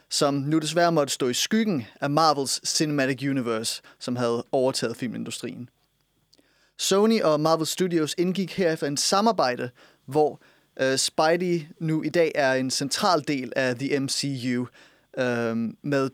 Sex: male